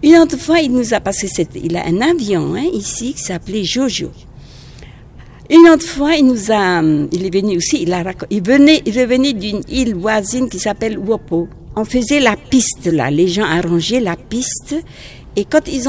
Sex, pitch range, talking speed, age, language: female, 190-260 Hz, 195 wpm, 60-79, French